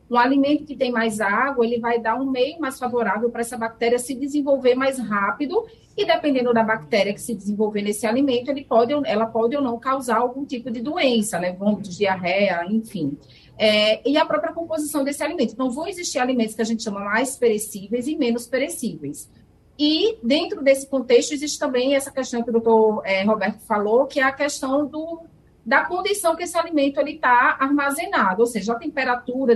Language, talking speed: Portuguese, 190 wpm